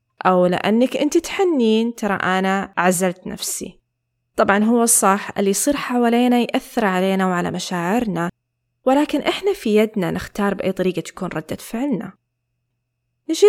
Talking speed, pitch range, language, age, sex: 130 wpm, 175-240 Hz, Arabic, 20-39, female